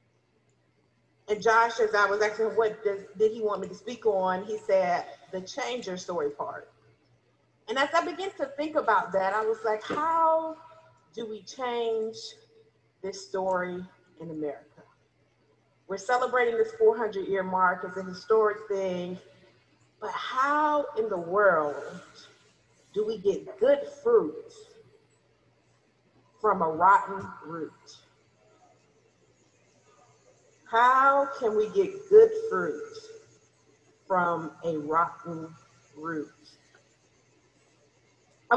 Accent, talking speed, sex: American, 115 wpm, female